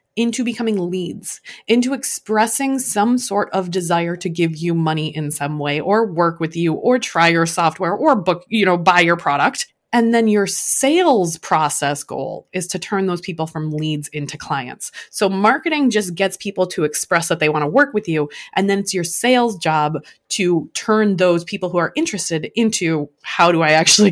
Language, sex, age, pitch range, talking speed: English, female, 20-39, 170-255 Hz, 195 wpm